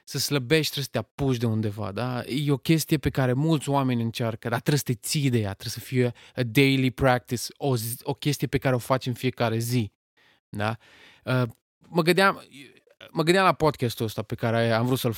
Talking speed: 215 wpm